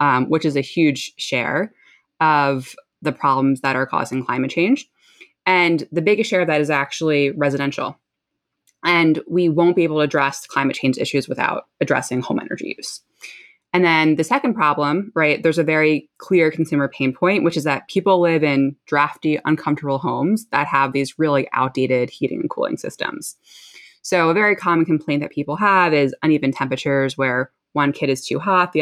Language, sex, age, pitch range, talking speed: English, female, 20-39, 140-170 Hz, 180 wpm